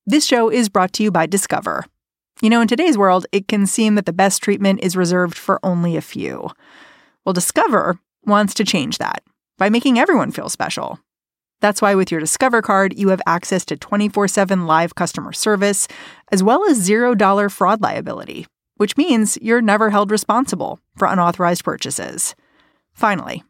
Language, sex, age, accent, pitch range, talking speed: English, female, 30-49, American, 170-215 Hz, 170 wpm